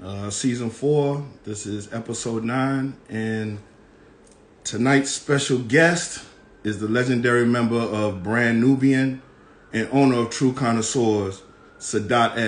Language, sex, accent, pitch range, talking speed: English, male, American, 115-140 Hz, 115 wpm